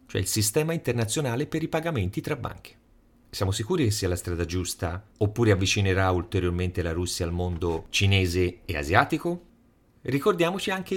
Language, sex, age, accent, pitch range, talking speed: Italian, male, 40-59, native, 90-125 Hz, 155 wpm